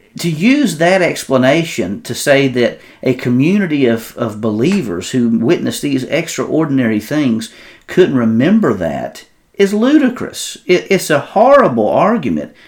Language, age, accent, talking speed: English, 50-69, American, 130 wpm